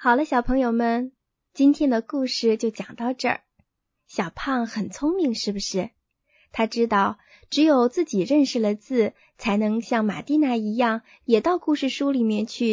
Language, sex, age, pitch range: Chinese, female, 20-39, 215-270 Hz